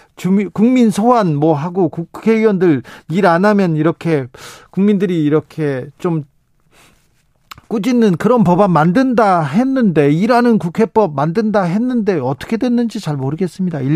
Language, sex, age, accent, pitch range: Korean, male, 40-59, native, 155-205 Hz